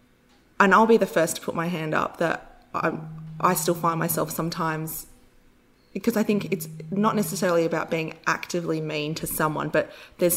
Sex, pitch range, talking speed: female, 155-175 Hz, 180 wpm